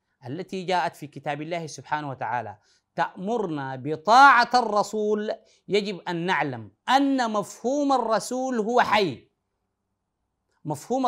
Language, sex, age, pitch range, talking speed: Arabic, male, 30-49, 150-245 Hz, 105 wpm